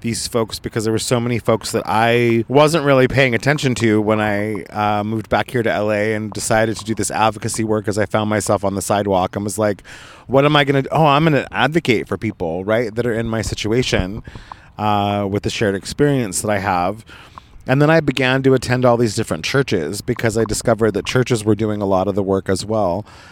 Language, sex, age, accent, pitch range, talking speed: English, male, 30-49, American, 105-130 Hz, 235 wpm